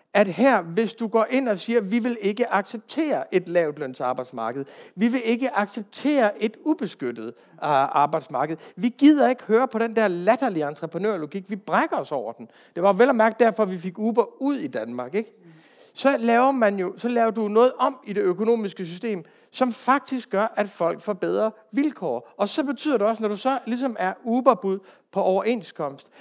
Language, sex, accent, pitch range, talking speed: Danish, male, native, 180-235 Hz, 190 wpm